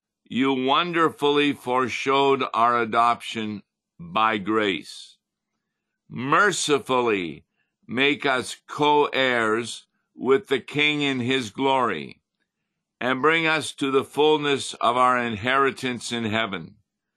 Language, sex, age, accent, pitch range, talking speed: English, male, 50-69, American, 105-130 Hz, 100 wpm